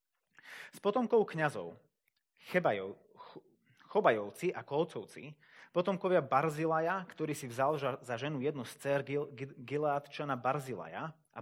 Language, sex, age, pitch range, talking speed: Slovak, male, 30-49, 130-170 Hz, 105 wpm